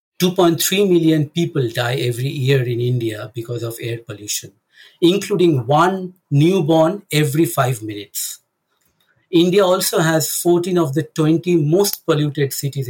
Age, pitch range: 60-79, 130-170 Hz